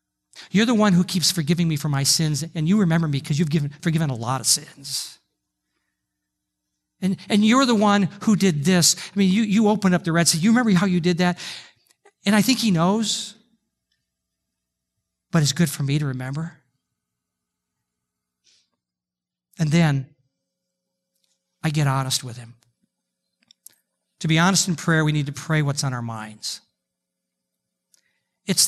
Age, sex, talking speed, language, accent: 50-69, male, 165 wpm, English, American